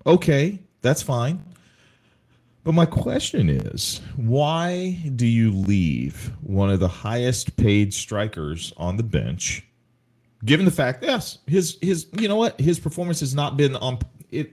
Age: 40-59